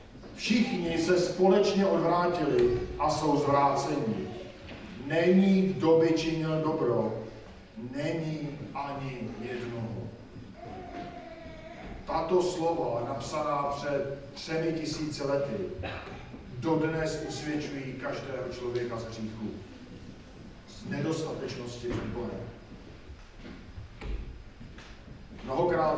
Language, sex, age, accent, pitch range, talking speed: Czech, male, 50-69, native, 120-160 Hz, 75 wpm